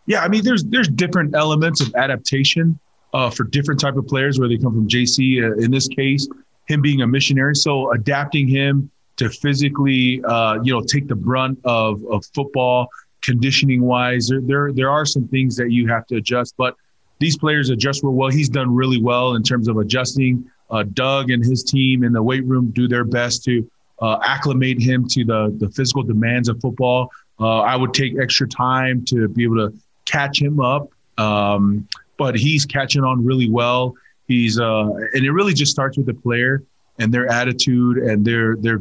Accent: American